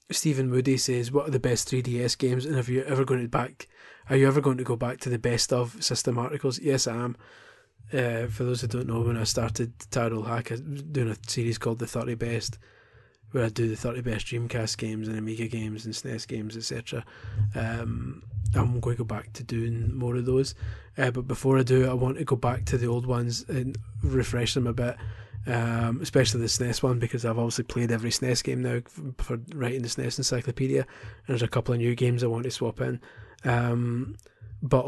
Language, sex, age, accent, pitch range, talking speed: English, male, 20-39, British, 115-130 Hz, 220 wpm